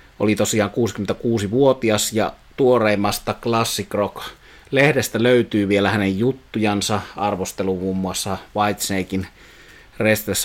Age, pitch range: 30-49, 100-115 Hz